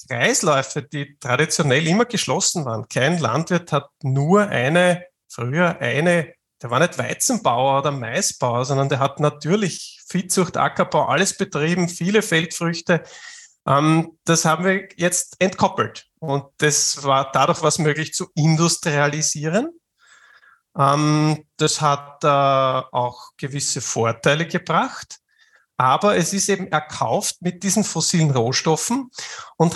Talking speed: 125 wpm